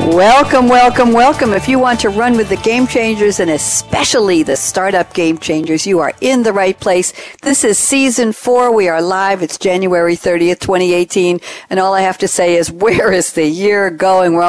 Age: 60-79